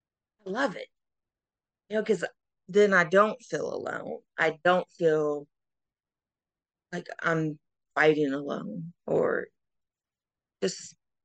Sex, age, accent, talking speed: female, 40-59, American, 105 wpm